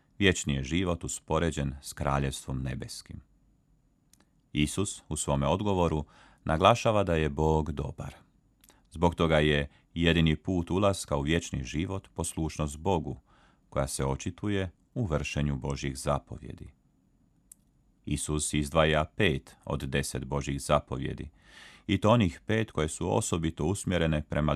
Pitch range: 70-85 Hz